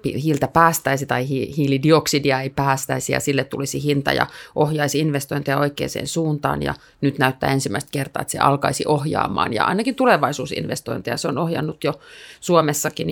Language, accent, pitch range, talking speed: Finnish, native, 140-165 Hz, 150 wpm